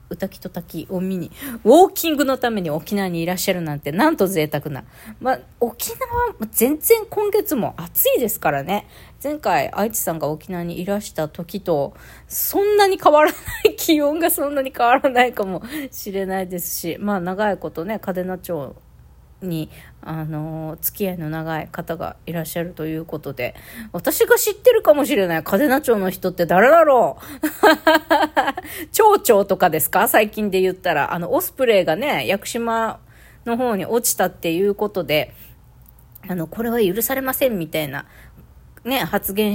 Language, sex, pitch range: Japanese, female, 170-270 Hz